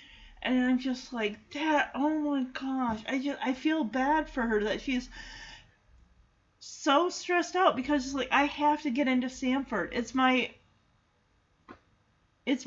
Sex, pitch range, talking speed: female, 225-310 Hz, 150 wpm